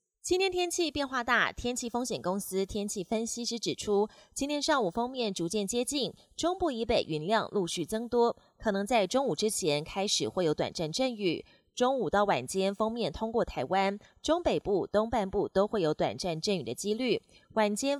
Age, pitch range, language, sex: 20-39, 180-240 Hz, Chinese, female